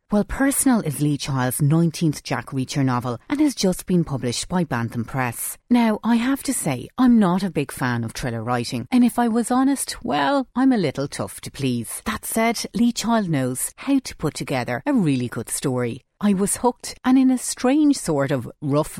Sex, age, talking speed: female, 30-49, 205 wpm